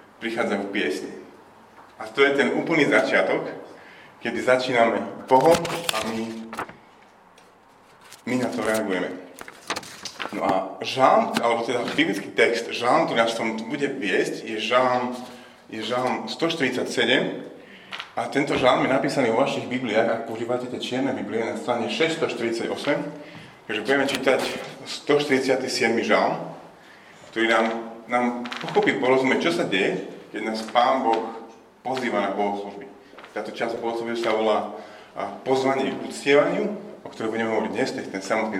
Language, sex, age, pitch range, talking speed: Slovak, male, 30-49, 110-130 Hz, 140 wpm